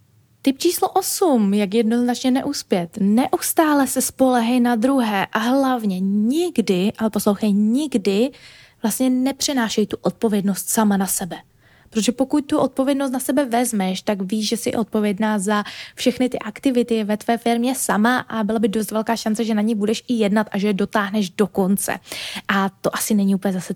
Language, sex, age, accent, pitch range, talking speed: Czech, female, 20-39, native, 200-245 Hz, 170 wpm